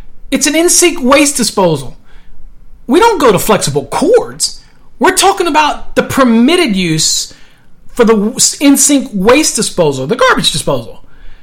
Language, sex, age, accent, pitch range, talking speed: English, male, 40-59, American, 200-270 Hz, 130 wpm